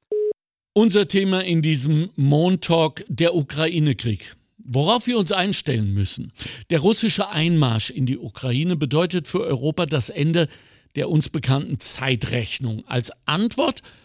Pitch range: 135-190 Hz